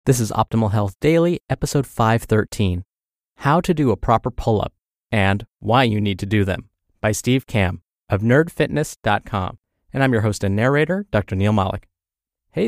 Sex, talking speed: male, 165 wpm